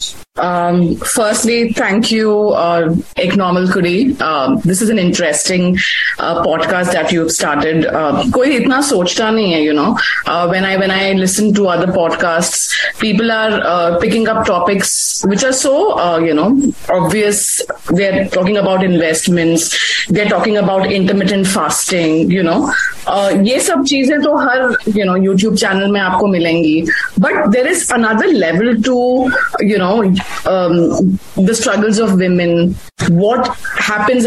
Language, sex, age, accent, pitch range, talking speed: English, female, 30-49, Indian, 175-225 Hz, 145 wpm